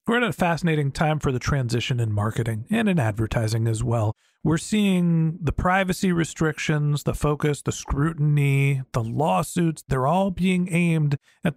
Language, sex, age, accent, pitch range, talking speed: English, male, 40-59, American, 130-175 Hz, 160 wpm